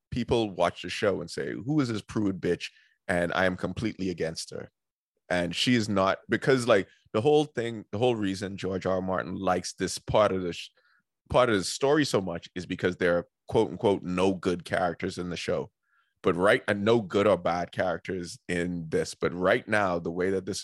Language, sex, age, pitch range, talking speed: English, male, 20-39, 90-105 Hz, 215 wpm